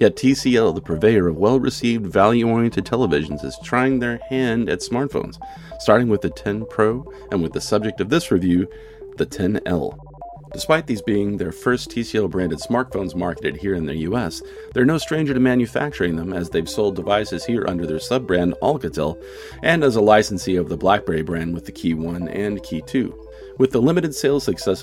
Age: 40-59